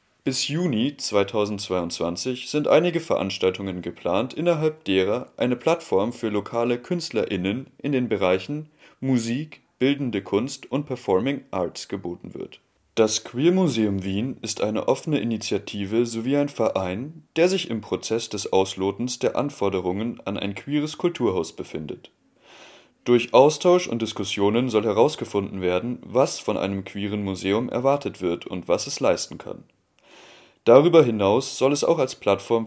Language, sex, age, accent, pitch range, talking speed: German, male, 30-49, German, 100-140 Hz, 140 wpm